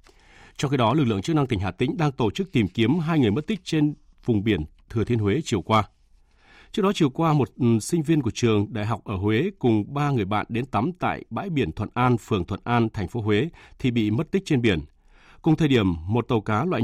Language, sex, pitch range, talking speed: Vietnamese, male, 100-140 Hz, 250 wpm